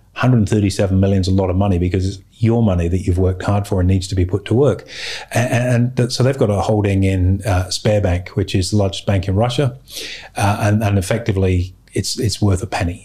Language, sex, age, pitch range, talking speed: English, male, 30-49, 95-110 Hz, 225 wpm